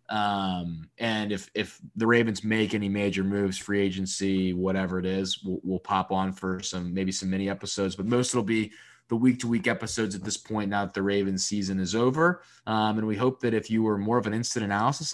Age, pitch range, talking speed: 20-39, 100-120 Hz, 230 wpm